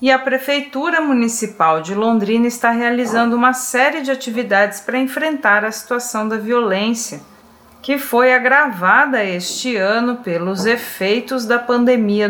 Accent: Brazilian